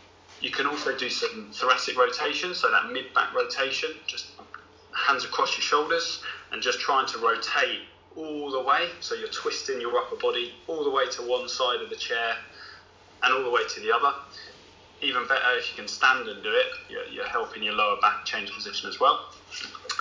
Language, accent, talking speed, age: English, British, 190 wpm, 20-39